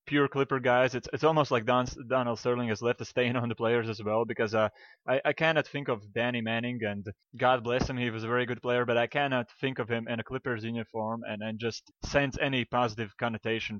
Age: 20-39